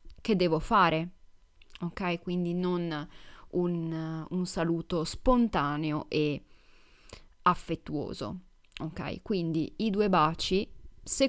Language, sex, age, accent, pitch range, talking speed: Italian, female, 30-49, native, 155-195 Hz, 95 wpm